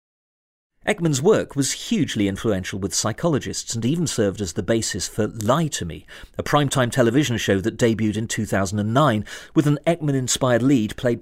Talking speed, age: 160 wpm, 40-59